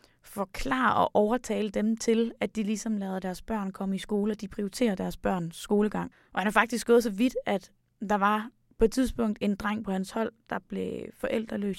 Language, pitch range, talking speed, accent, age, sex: Danish, 195-230 Hz, 215 wpm, native, 20-39, female